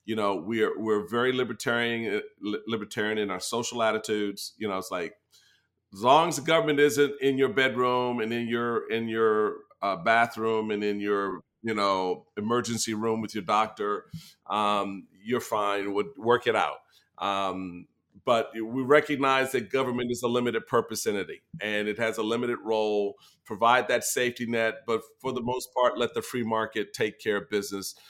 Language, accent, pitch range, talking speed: English, American, 105-125 Hz, 175 wpm